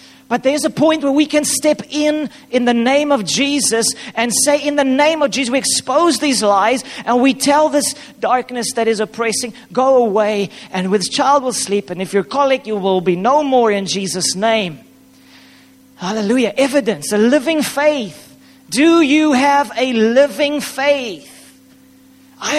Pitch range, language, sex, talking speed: 220-270 Hz, English, male, 170 wpm